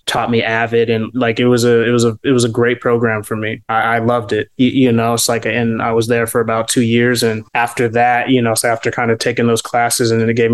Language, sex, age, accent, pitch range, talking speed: English, male, 20-39, American, 115-140 Hz, 290 wpm